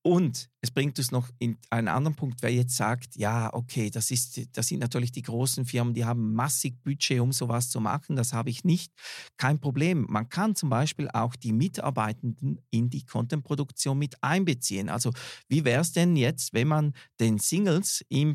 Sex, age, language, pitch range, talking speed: male, 40-59, German, 120-155 Hz, 195 wpm